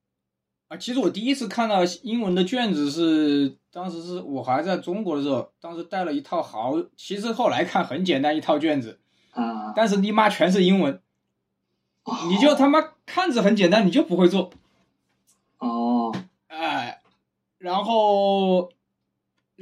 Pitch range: 135-230 Hz